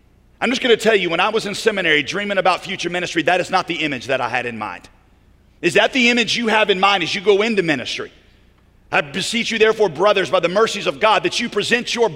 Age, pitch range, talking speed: 40-59, 125-165 Hz, 255 wpm